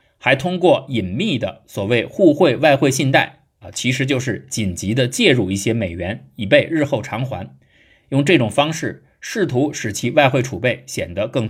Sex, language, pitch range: male, Chinese, 105-155 Hz